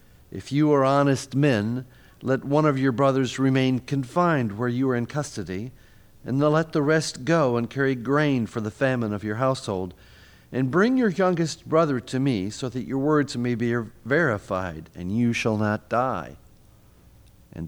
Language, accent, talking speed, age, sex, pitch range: English, American, 175 wpm, 50-69, male, 95-135 Hz